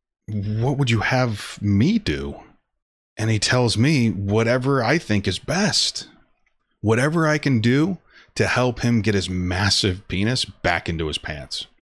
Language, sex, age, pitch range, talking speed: English, male, 30-49, 85-105 Hz, 150 wpm